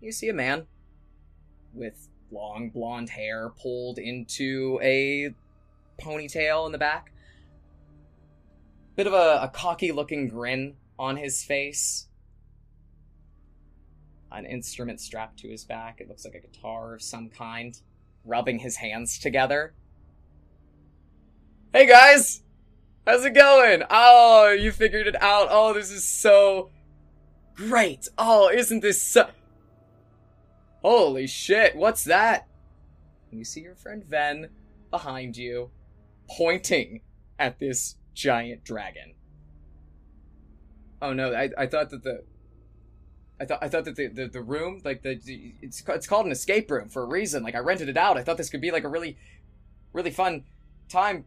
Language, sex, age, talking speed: English, male, 20-39, 145 wpm